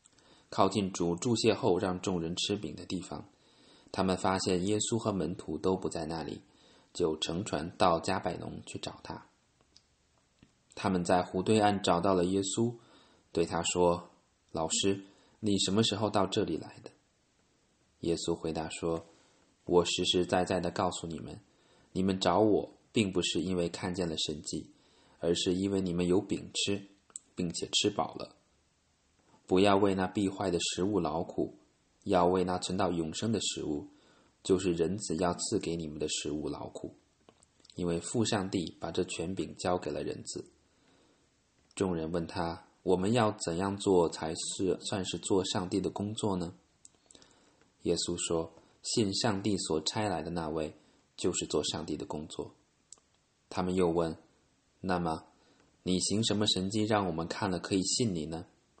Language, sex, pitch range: English, male, 85-100 Hz